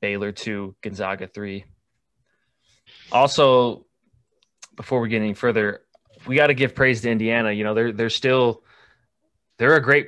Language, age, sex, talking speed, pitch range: English, 20-39, male, 150 wpm, 110-130 Hz